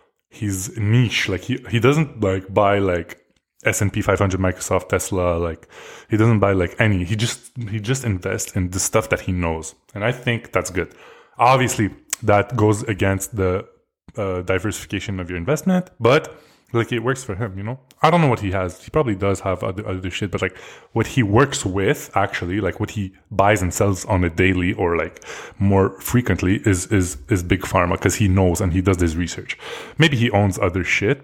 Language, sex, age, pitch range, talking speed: English, male, 20-39, 95-115 Hz, 200 wpm